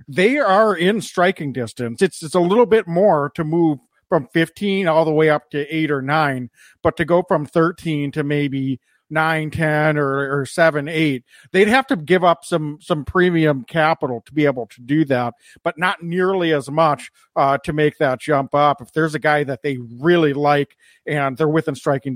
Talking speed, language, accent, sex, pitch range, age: 205 wpm, English, American, male, 140-170 Hz, 50-69